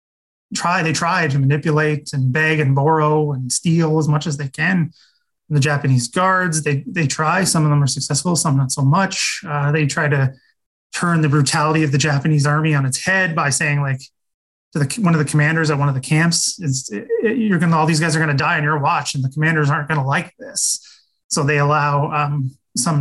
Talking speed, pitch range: 225 wpm, 140-165 Hz